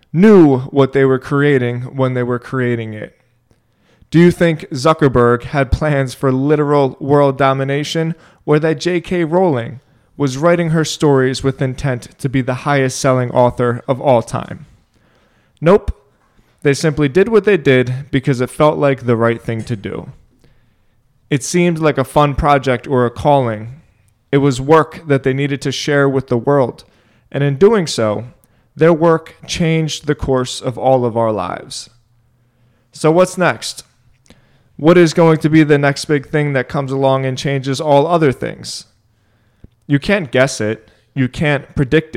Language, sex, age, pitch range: English, male, 20-39, 125-150 Hz